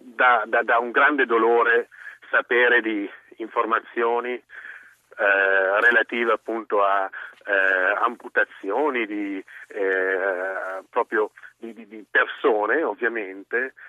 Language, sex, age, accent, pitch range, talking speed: Italian, male, 40-59, native, 115-160 Hz, 95 wpm